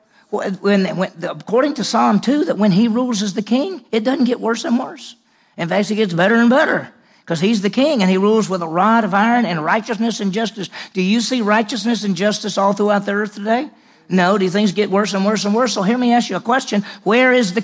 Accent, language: American, English